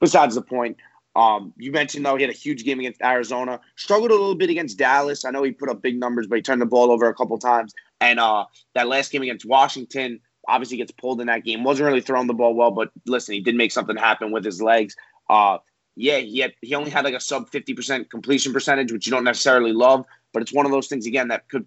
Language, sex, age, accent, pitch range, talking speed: English, male, 20-39, American, 115-135 Hz, 250 wpm